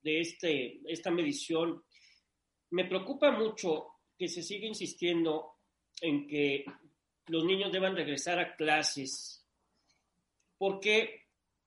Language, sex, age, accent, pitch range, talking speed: Spanish, male, 40-59, Mexican, 150-205 Hz, 105 wpm